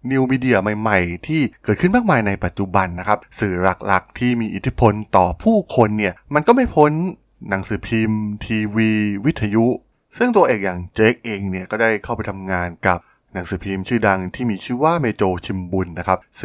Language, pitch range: Thai, 95-120 Hz